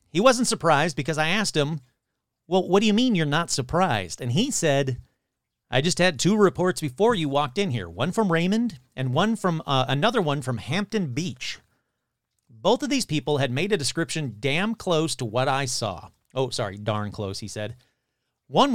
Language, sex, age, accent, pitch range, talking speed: English, male, 40-59, American, 130-185 Hz, 195 wpm